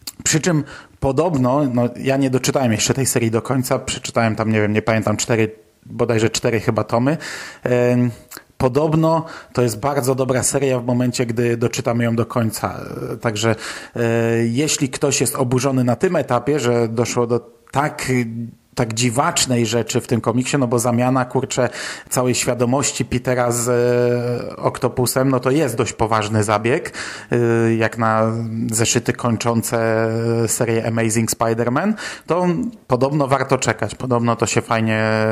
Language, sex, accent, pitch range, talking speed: Polish, male, native, 115-140 Hz, 145 wpm